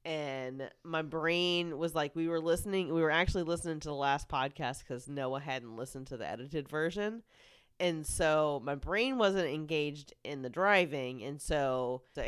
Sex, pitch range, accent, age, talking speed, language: female, 145-210 Hz, American, 30-49, 175 wpm, English